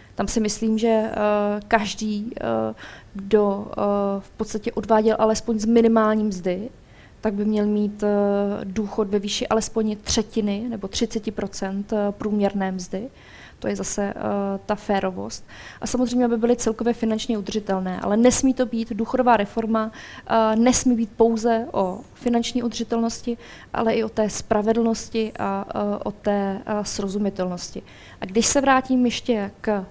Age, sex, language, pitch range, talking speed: 20-39, female, Czech, 210-230 Hz, 130 wpm